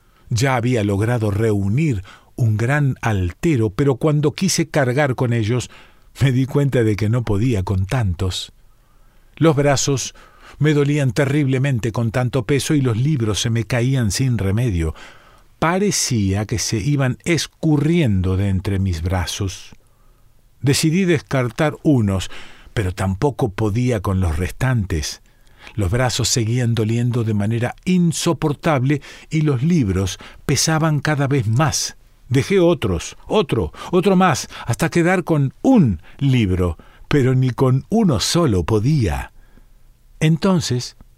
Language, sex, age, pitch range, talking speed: Spanish, male, 40-59, 110-150 Hz, 125 wpm